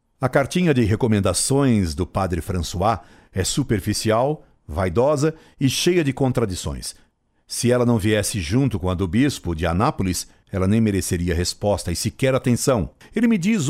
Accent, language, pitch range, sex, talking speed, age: Brazilian, Portuguese, 95-130 Hz, male, 155 wpm, 60-79